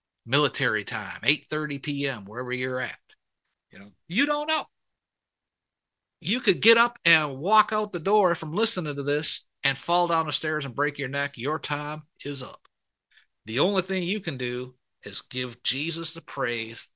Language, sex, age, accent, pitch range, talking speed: English, male, 50-69, American, 130-180 Hz, 175 wpm